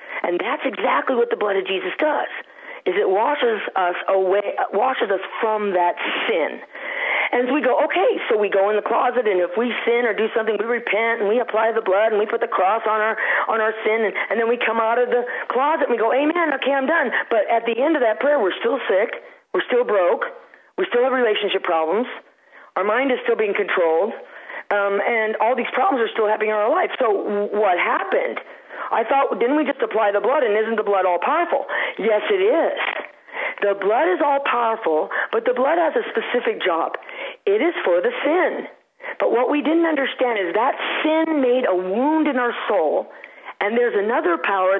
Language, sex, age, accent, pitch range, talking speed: English, female, 40-59, American, 215-345 Hz, 210 wpm